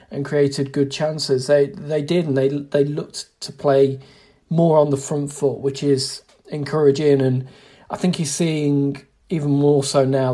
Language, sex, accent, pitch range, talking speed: English, male, British, 135-150 Hz, 175 wpm